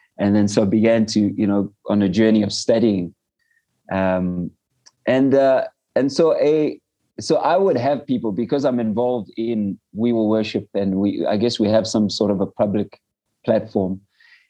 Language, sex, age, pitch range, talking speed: English, male, 30-49, 105-135 Hz, 175 wpm